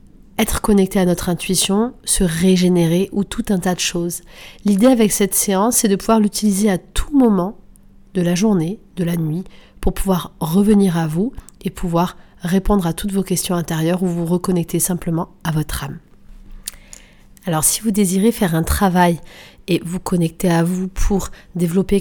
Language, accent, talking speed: French, French, 175 wpm